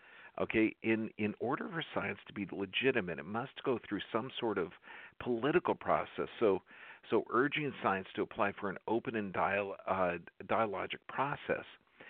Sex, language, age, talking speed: male, English, 50-69, 160 wpm